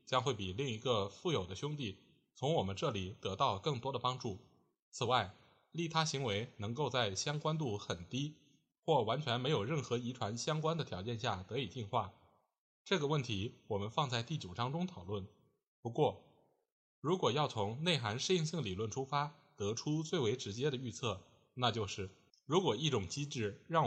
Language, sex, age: Chinese, male, 20-39